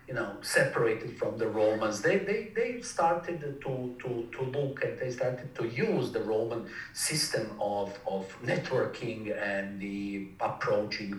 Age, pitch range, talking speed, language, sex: 50-69, 105-175 Hz, 150 wpm, English, male